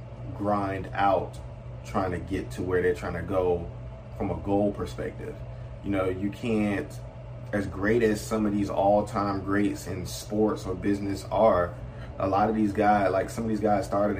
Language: English